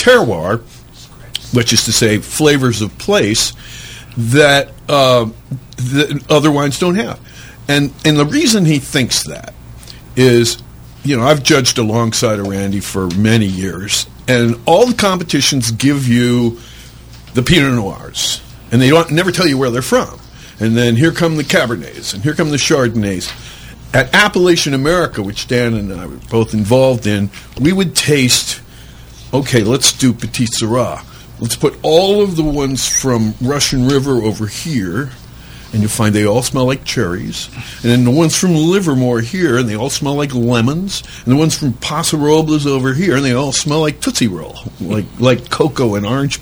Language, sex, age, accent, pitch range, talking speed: English, male, 50-69, American, 115-150 Hz, 170 wpm